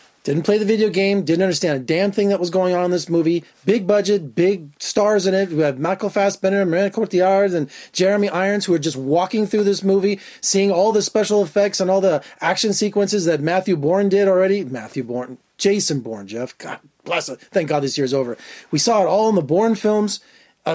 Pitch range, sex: 155-205 Hz, male